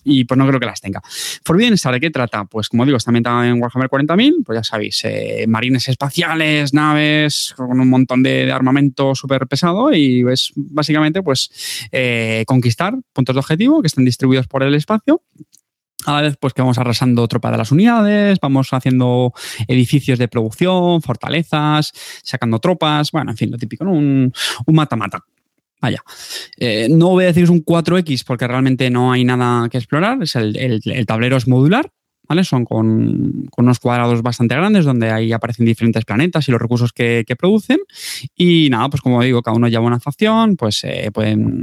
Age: 20-39